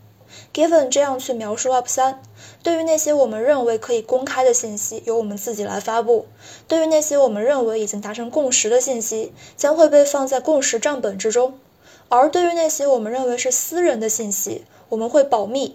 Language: Chinese